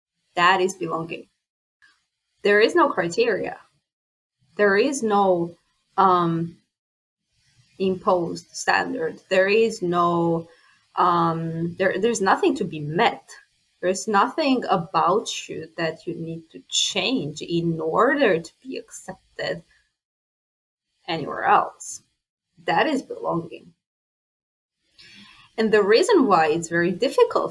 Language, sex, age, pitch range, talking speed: English, female, 20-39, 170-225 Hz, 105 wpm